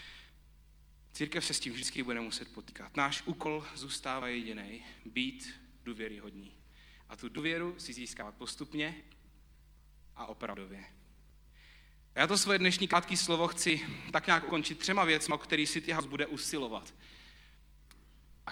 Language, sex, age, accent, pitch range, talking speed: Czech, male, 40-59, native, 120-175 Hz, 135 wpm